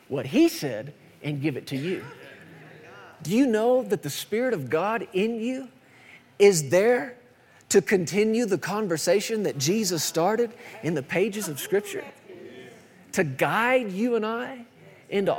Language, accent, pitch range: English, American, 170-235 Hz